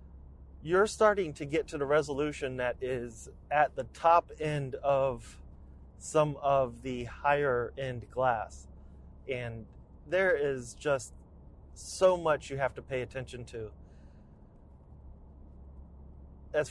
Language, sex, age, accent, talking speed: English, male, 30-49, American, 115 wpm